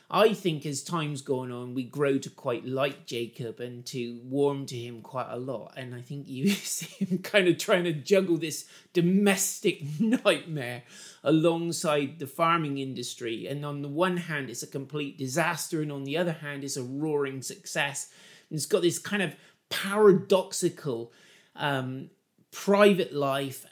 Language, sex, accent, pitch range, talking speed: English, male, British, 130-175 Hz, 165 wpm